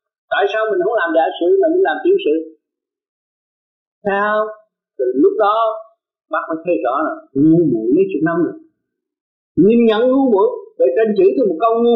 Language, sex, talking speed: Vietnamese, male, 190 wpm